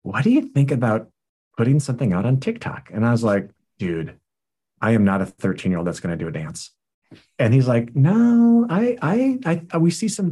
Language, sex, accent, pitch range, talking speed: English, male, American, 95-120 Hz, 220 wpm